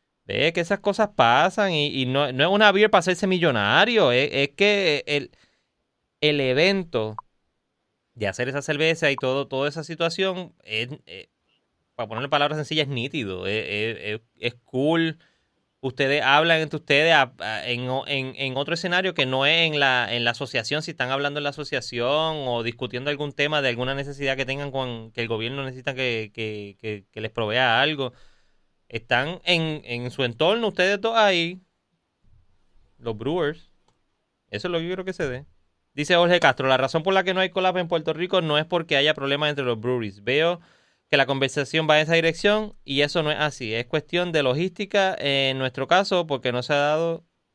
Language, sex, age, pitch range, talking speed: Spanish, male, 30-49, 125-165 Hz, 190 wpm